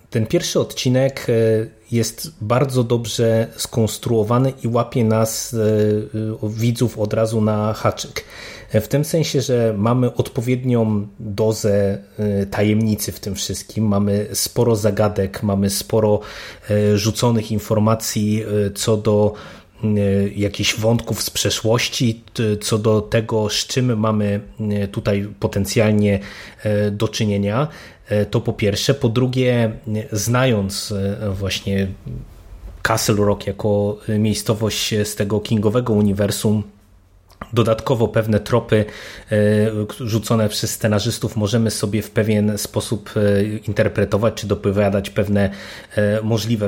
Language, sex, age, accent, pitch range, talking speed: Polish, male, 30-49, native, 105-120 Hz, 105 wpm